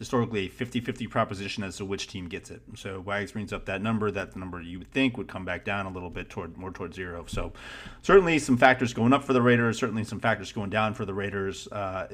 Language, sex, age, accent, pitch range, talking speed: English, male, 30-49, American, 95-115 Hz, 245 wpm